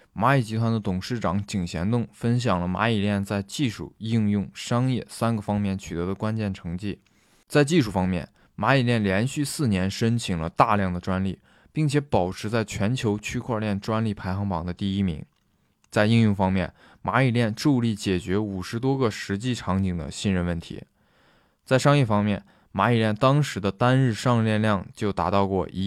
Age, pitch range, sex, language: 20-39, 95-120 Hz, male, Chinese